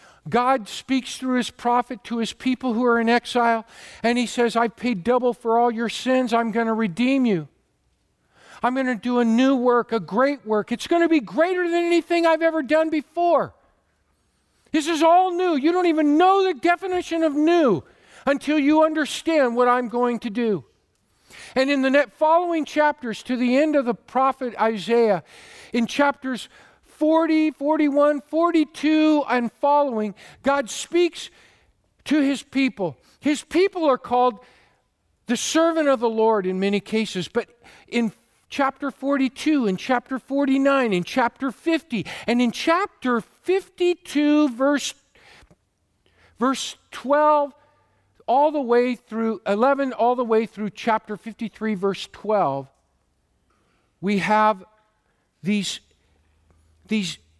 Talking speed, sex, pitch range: 145 wpm, male, 220-300 Hz